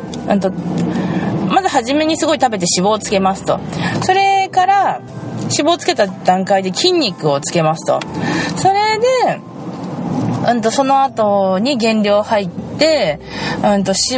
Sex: female